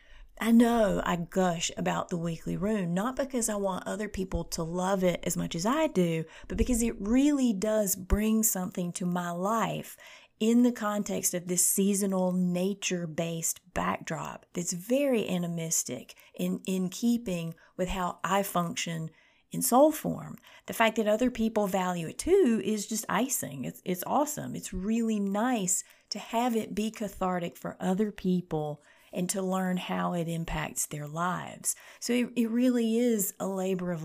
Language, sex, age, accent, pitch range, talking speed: English, female, 30-49, American, 175-220 Hz, 165 wpm